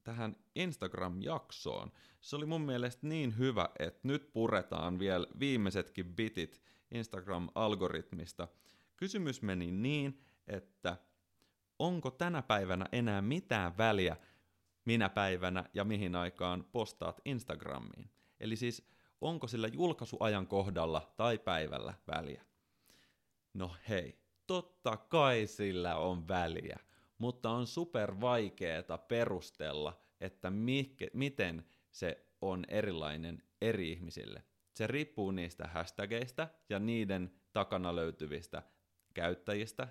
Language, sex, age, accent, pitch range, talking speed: Finnish, male, 30-49, native, 90-115 Hz, 105 wpm